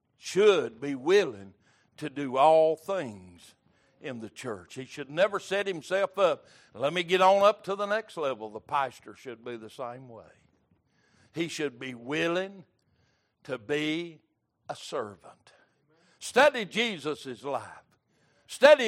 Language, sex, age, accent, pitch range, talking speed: English, male, 60-79, American, 130-190 Hz, 140 wpm